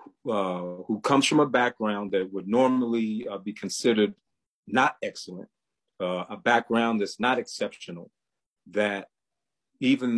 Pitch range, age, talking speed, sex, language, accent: 100-125 Hz, 40-59, 130 wpm, male, English, American